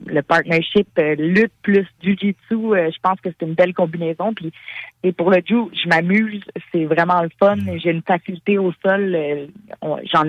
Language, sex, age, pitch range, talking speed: French, female, 30-49, 160-200 Hz, 190 wpm